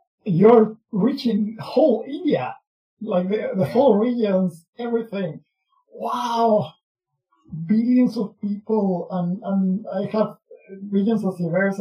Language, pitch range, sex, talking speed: Spanish, 165-220 Hz, male, 105 wpm